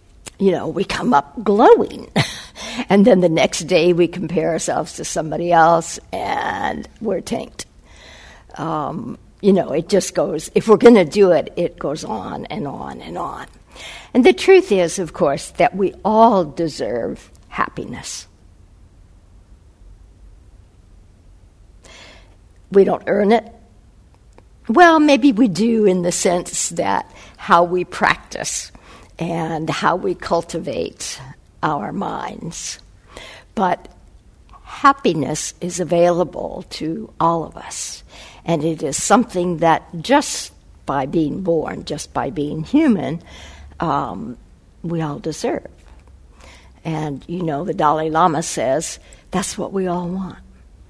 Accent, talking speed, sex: American, 125 wpm, female